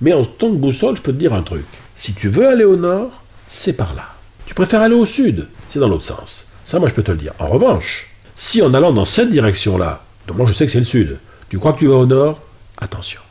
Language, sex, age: French, male, 50-69